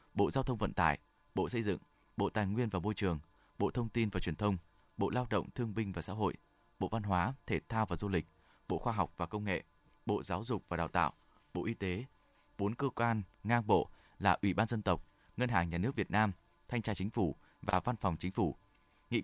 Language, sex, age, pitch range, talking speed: Vietnamese, male, 20-39, 90-115 Hz, 240 wpm